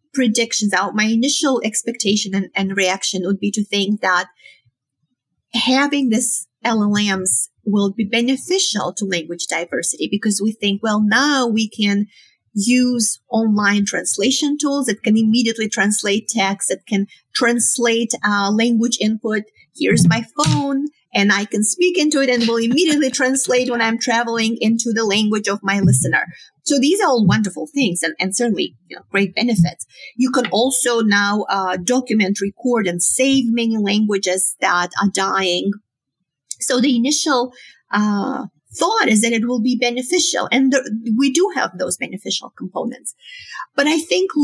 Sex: female